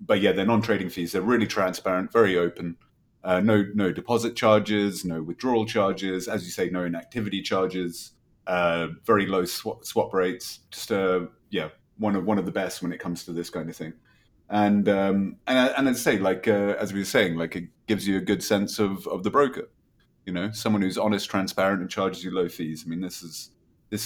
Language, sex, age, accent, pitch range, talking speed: English, male, 30-49, British, 90-105 Hz, 210 wpm